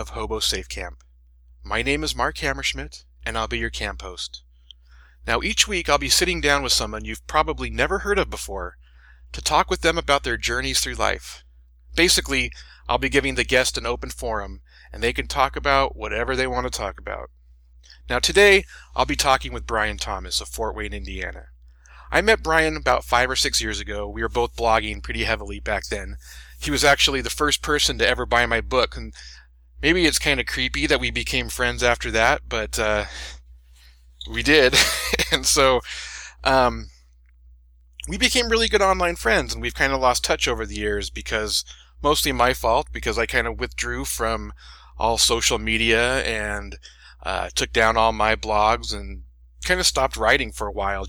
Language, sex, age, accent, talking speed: English, male, 30-49, American, 190 wpm